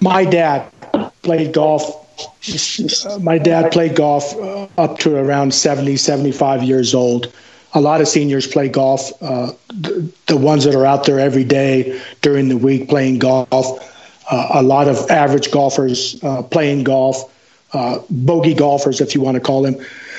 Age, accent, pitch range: 50-69, American, 140-180 Hz